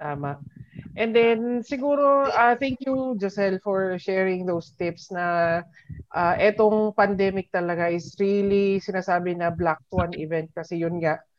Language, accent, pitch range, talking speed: Filipino, native, 170-210 Hz, 140 wpm